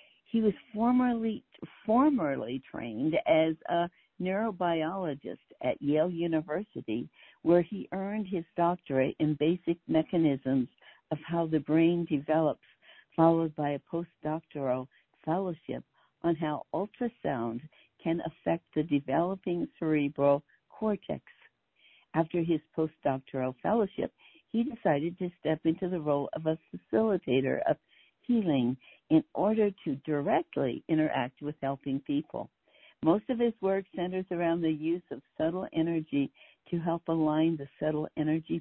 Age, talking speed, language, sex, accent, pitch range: 60-79, 125 wpm, English, female, American, 150-185 Hz